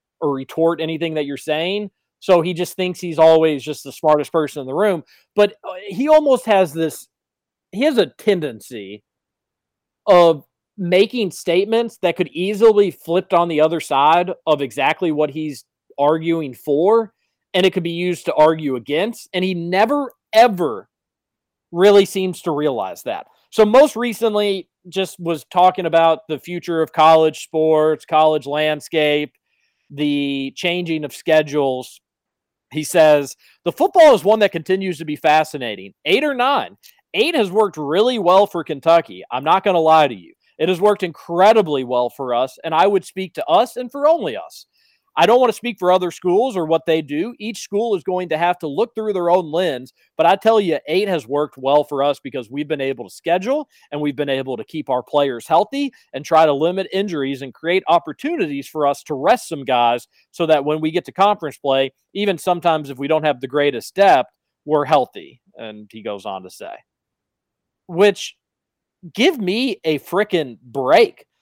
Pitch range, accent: 150-200 Hz, American